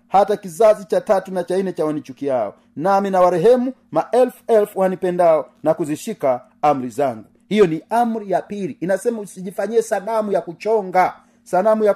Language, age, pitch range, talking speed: Swahili, 40-59, 165-220 Hz, 155 wpm